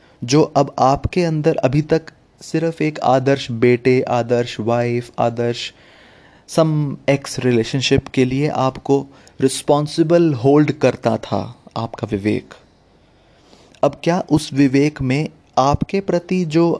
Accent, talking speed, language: native, 120 wpm, Hindi